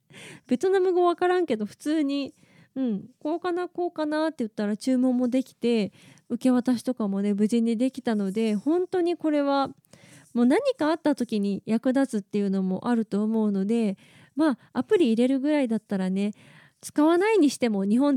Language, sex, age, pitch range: Japanese, female, 20-39, 220-315 Hz